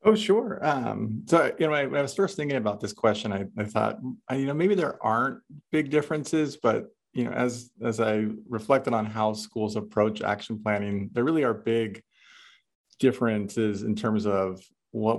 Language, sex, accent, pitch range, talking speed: English, male, American, 105-120 Hz, 195 wpm